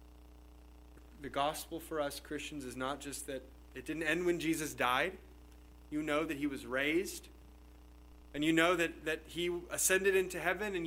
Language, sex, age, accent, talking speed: English, male, 30-49, American, 170 wpm